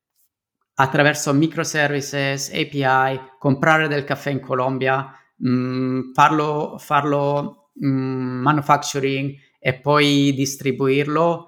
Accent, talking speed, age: native, 75 wpm, 30-49